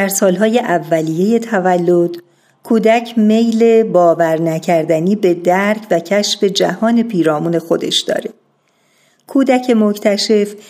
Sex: female